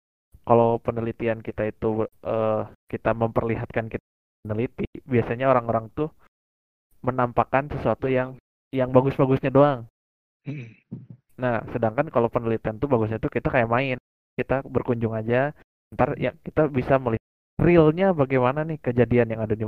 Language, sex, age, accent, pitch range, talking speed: Indonesian, male, 20-39, native, 110-135 Hz, 130 wpm